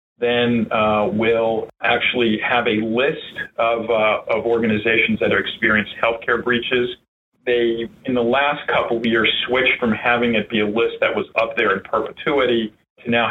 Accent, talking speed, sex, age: American, 170 wpm, male, 40-59